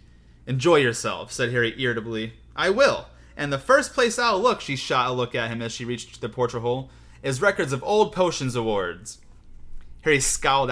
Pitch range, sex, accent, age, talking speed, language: 110-160 Hz, male, American, 30-49, 185 wpm, English